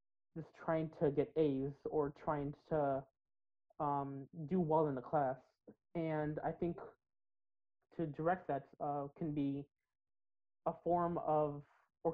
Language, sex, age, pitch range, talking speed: English, male, 20-39, 140-160 Hz, 135 wpm